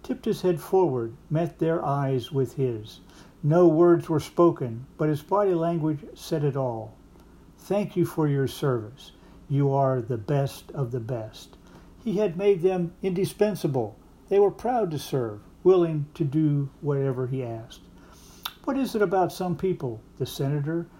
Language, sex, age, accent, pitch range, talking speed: English, male, 60-79, American, 135-175 Hz, 160 wpm